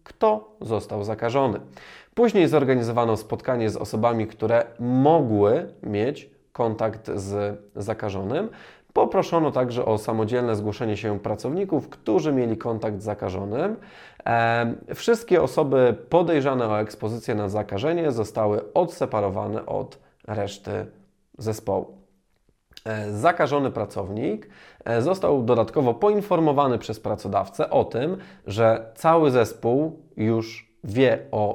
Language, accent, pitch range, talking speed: Polish, native, 105-130 Hz, 100 wpm